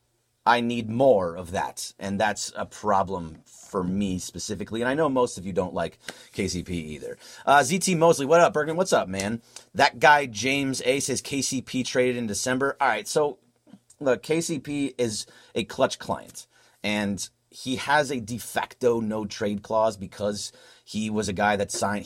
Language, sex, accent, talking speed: English, male, American, 175 wpm